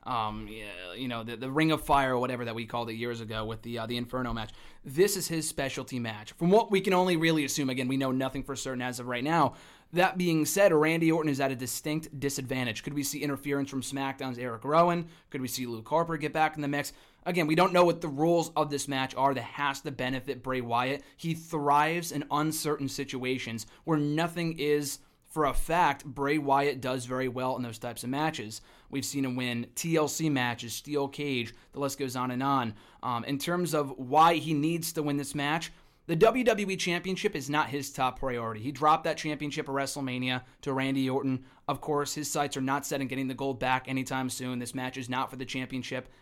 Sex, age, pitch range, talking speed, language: male, 20-39, 130-155 Hz, 225 wpm, English